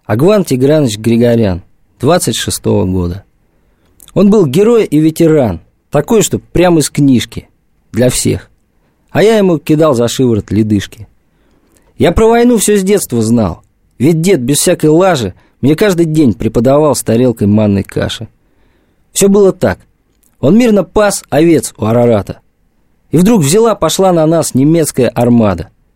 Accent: native